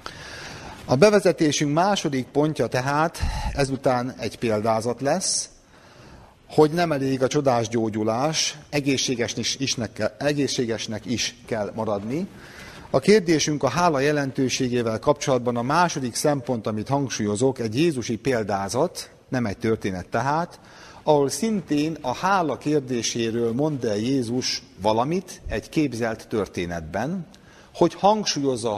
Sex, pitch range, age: male, 115-150 Hz, 50-69